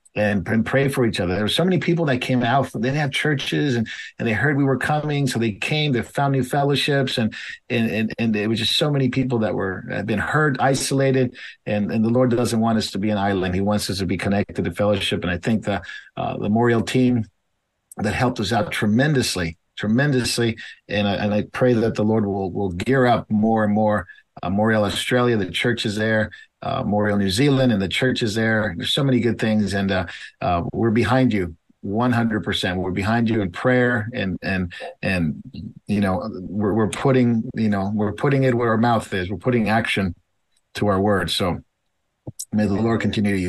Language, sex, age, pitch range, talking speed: English, male, 50-69, 105-130 Hz, 215 wpm